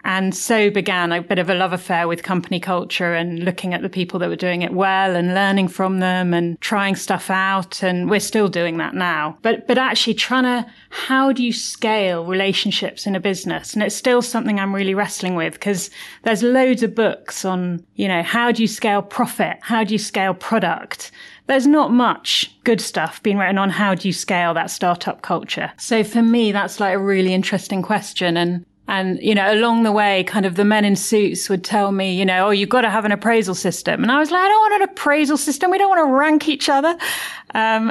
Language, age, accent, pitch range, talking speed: English, 30-49, British, 185-235 Hz, 225 wpm